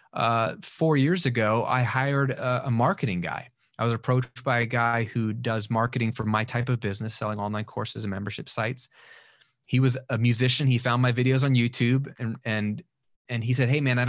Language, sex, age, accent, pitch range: Japanese, male, 30-49, American, 115-140 Hz